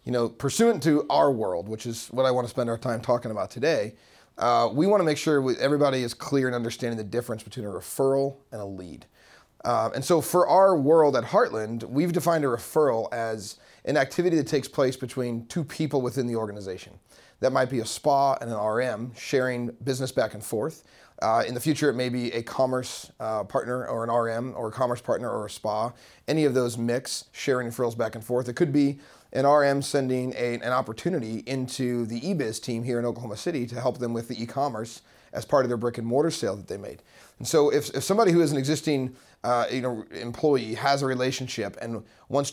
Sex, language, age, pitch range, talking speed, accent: male, English, 30-49, 115-140 Hz, 220 wpm, American